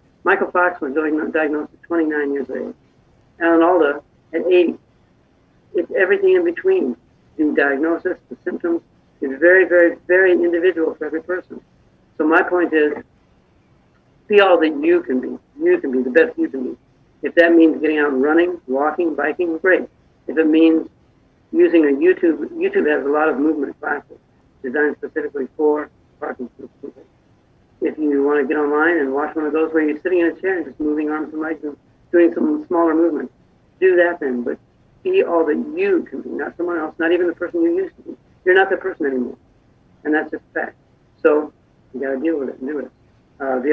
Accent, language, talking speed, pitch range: American, English, 200 wpm, 150-180 Hz